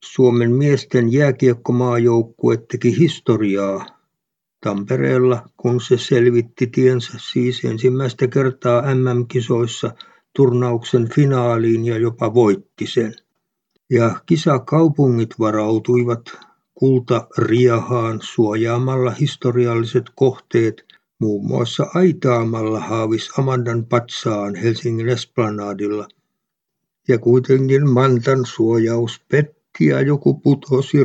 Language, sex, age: Finnish, male, 60-79